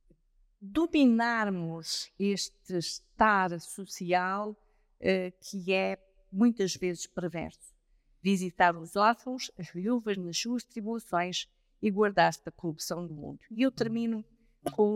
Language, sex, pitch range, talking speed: Portuguese, female, 185-245 Hz, 110 wpm